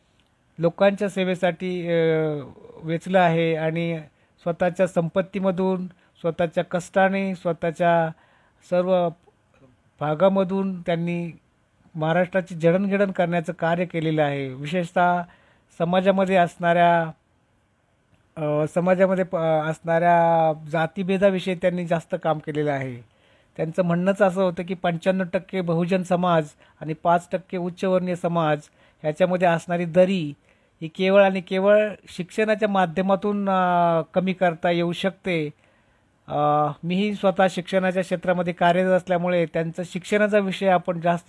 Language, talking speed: Marathi, 85 wpm